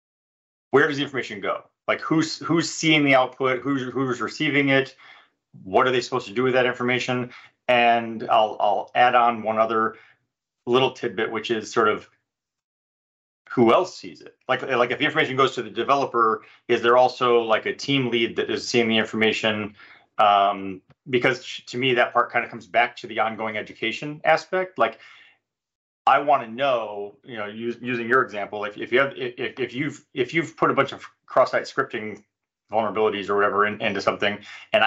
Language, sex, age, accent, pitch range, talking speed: English, male, 30-49, American, 110-135 Hz, 190 wpm